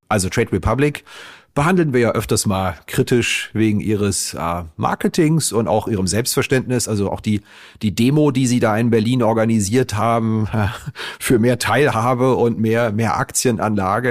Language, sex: German, male